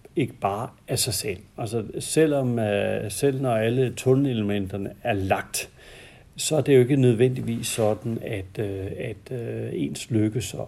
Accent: native